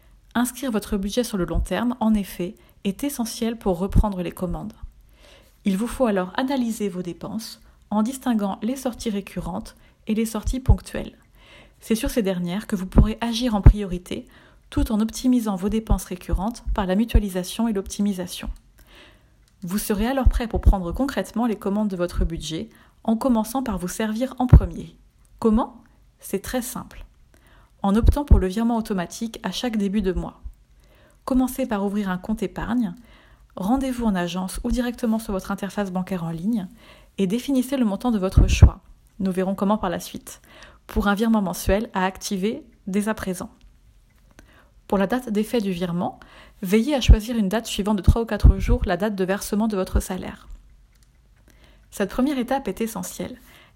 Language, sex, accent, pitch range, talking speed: French, female, French, 195-235 Hz, 170 wpm